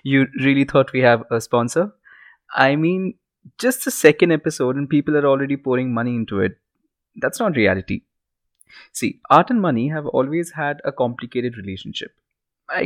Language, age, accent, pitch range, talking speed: English, 20-39, Indian, 115-145 Hz, 165 wpm